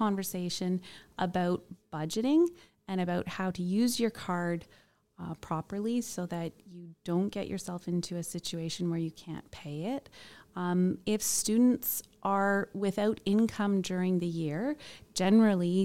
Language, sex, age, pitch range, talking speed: English, female, 30-49, 170-200 Hz, 135 wpm